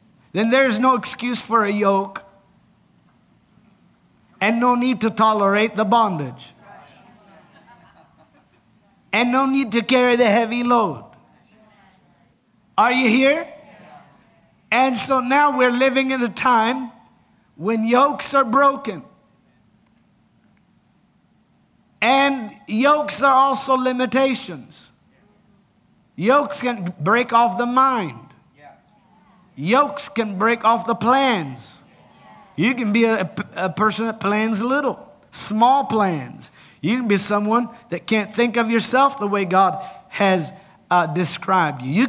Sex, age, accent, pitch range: male, 50-69, American, 195-235 Hz